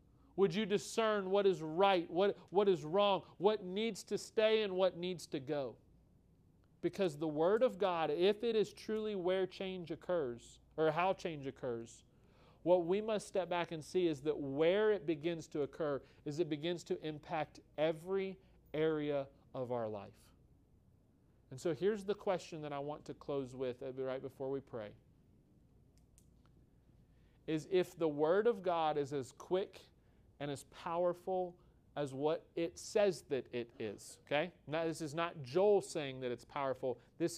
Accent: American